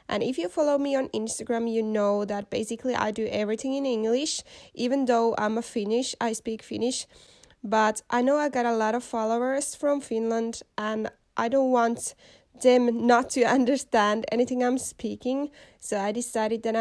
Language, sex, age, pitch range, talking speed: Finnish, female, 20-39, 220-260 Hz, 180 wpm